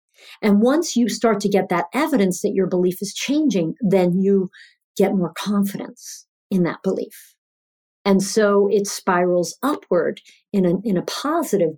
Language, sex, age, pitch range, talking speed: English, female, 50-69, 180-240 Hz, 155 wpm